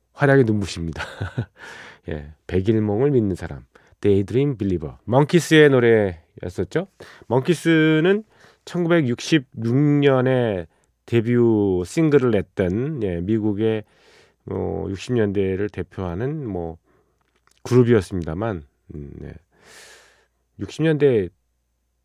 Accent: native